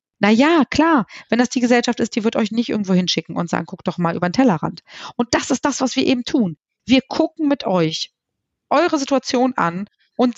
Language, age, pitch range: German, 40-59, 195-275 Hz